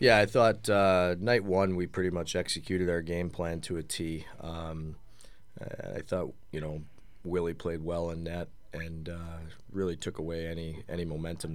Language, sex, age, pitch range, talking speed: English, male, 30-49, 85-95 Hz, 175 wpm